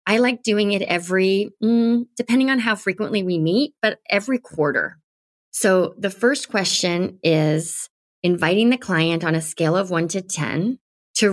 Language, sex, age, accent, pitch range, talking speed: English, female, 30-49, American, 165-200 Hz, 165 wpm